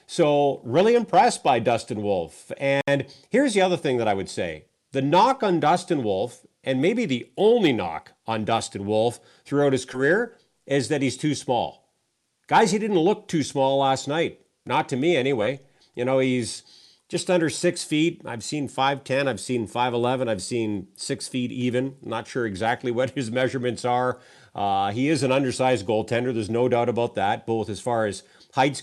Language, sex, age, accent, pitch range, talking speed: English, male, 40-59, American, 125-155 Hz, 185 wpm